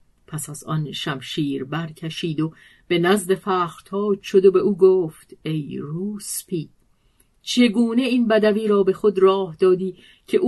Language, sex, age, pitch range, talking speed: Persian, female, 50-69, 155-200 Hz, 145 wpm